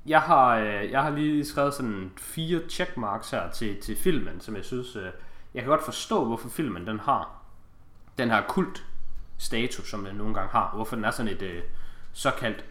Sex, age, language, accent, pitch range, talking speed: male, 20-39, Danish, native, 95-120 Hz, 195 wpm